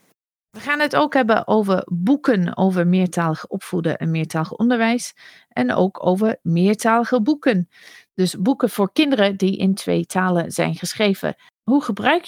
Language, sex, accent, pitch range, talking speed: Dutch, female, Dutch, 170-225 Hz, 145 wpm